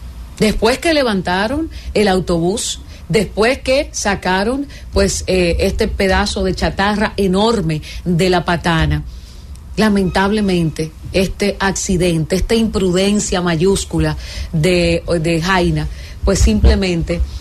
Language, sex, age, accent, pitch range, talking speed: English, female, 40-59, American, 165-210 Hz, 100 wpm